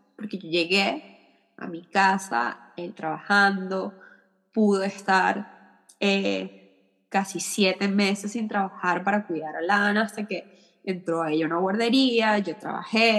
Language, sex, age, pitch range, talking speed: Spanish, female, 20-39, 205-275 Hz, 130 wpm